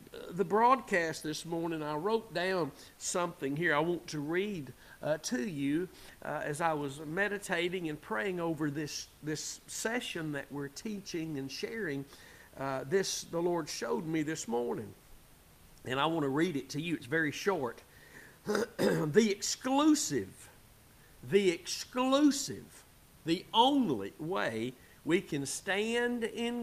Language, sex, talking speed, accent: English, male, 140 wpm, American